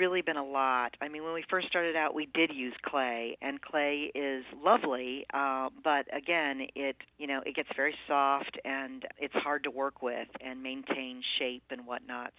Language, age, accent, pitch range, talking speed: English, 40-59, American, 125-145 Hz, 195 wpm